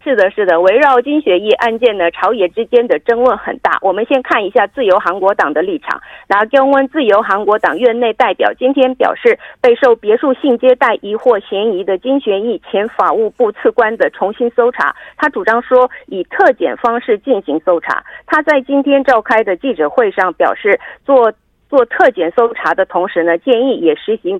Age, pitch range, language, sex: 50-69, 220-300 Hz, Korean, female